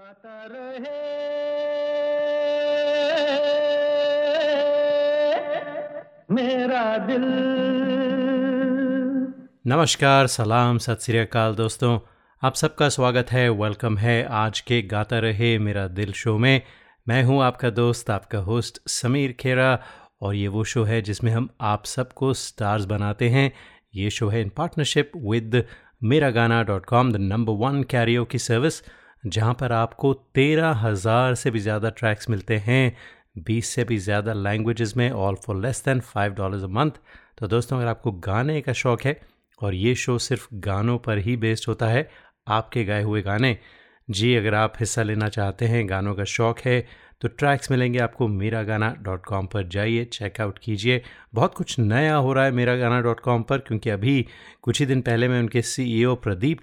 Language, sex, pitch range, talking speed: Hindi, male, 110-140 Hz, 145 wpm